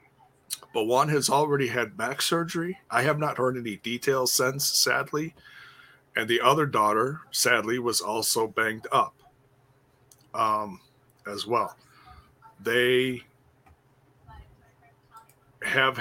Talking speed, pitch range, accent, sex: 110 wpm, 120-140 Hz, American, male